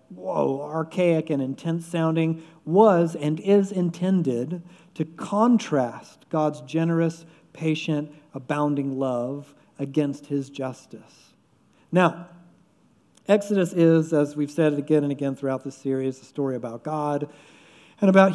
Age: 50-69